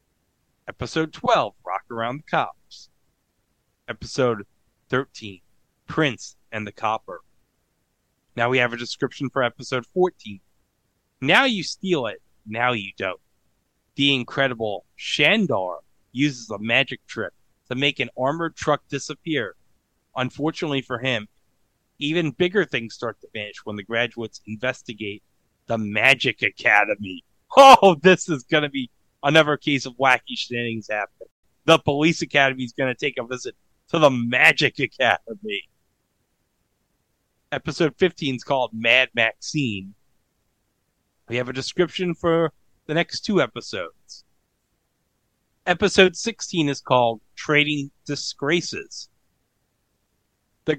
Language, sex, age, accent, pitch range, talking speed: English, male, 30-49, American, 115-155 Hz, 120 wpm